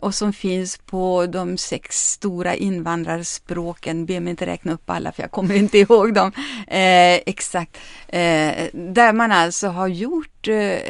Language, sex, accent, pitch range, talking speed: Swedish, female, native, 175-230 Hz, 145 wpm